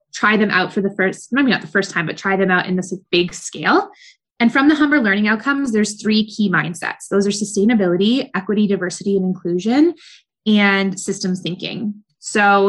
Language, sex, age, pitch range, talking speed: English, female, 20-39, 190-230 Hz, 195 wpm